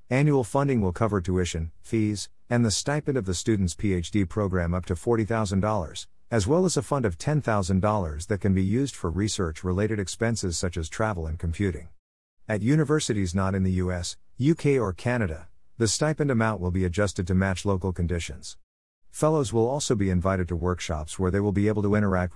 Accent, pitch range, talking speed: American, 90-115 Hz, 190 wpm